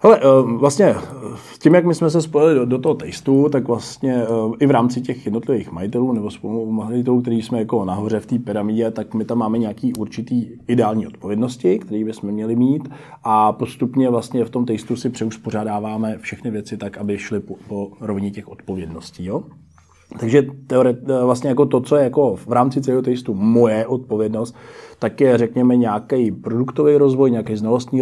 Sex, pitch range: male, 105-125 Hz